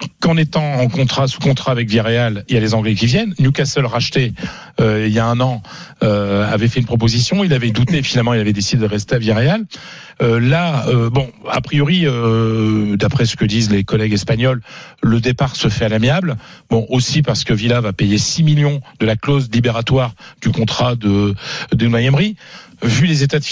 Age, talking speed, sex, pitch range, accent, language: 40-59, 205 wpm, male, 115-145 Hz, French, French